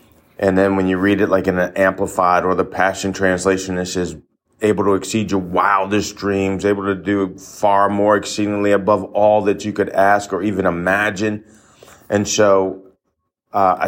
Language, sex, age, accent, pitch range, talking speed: English, male, 30-49, American, 95-105 Hz, 175 wpm